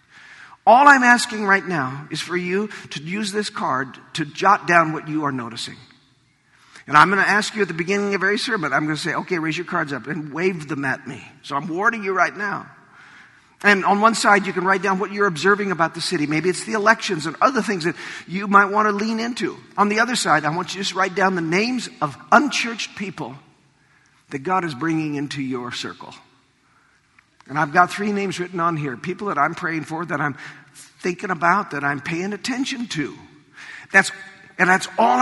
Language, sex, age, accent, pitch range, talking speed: English, male, 50-69, American, 150-200 Hz, 220 wpm